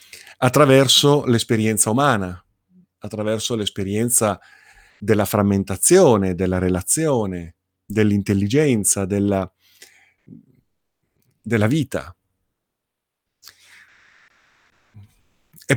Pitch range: 100-125 Hz